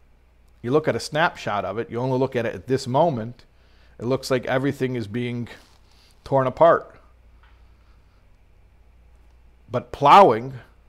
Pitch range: 85-135 Hz